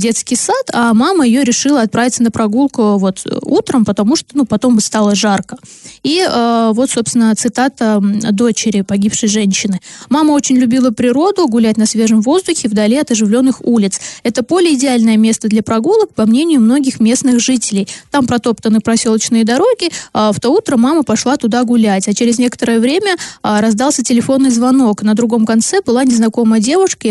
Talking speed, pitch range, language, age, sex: 165 wpm, 220-260 Hz, Russian, 20-39, female